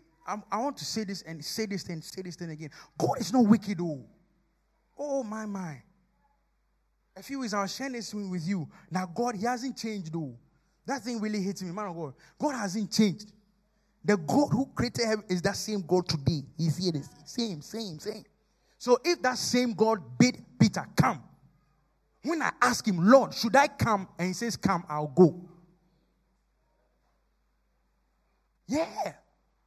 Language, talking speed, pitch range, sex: English, 170 wpm, 175-250 Hz, male